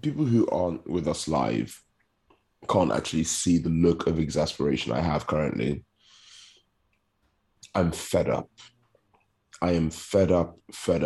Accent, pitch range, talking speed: British, 85-105 Hz, 130 wpm